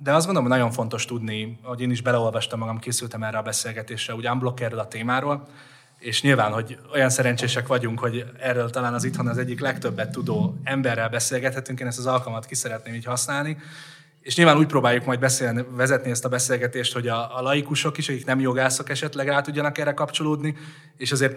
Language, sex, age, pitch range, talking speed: Hungarian, male, 20-39, 115-130 Hz, 195 wpm